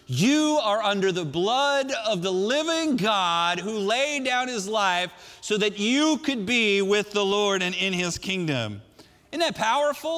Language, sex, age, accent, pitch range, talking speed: Dutch, male, 40-59, American, 175-235 Hz, 170 wpm